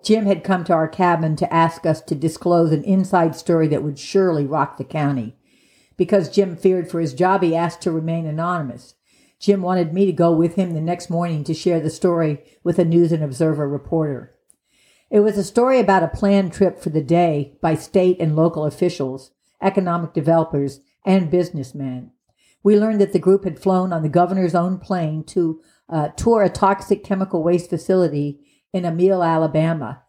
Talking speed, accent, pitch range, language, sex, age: 185 wpm, American, 155-180 Hz, English, female, 60-79